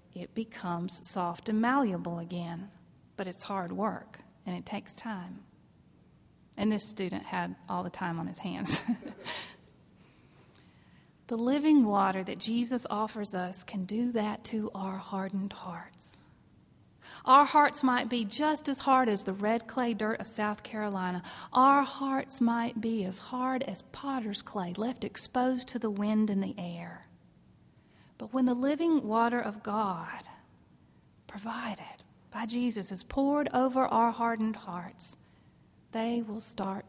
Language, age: English, 40-59